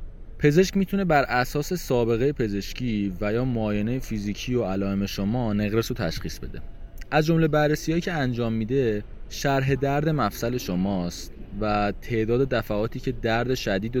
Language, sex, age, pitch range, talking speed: English, male, 20-39, 100-130 Hz, 140 wpm